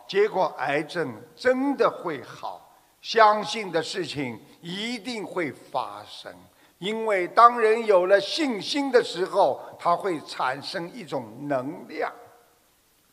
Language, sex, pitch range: Chinese, male, 185-255 Hz